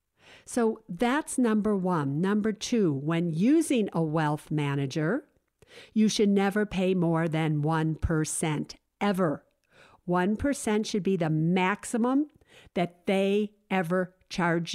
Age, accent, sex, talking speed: 50-69, American, female, 115 wpm